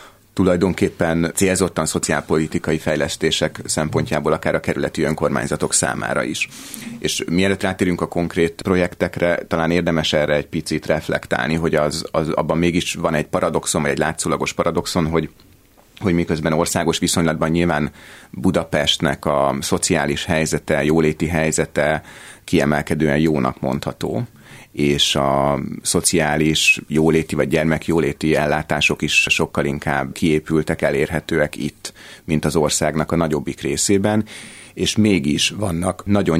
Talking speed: 120 wpm